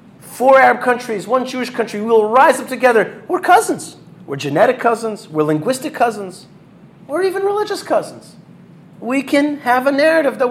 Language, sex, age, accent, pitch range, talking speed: English, male, 40-59, American, 160-230 Hz, 160 wpm